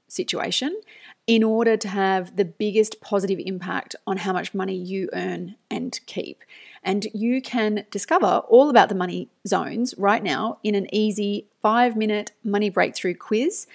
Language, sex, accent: English, female, Australian